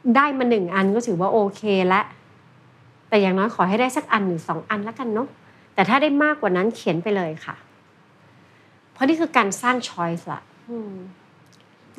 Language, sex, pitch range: Thai, female, 175-220 Hz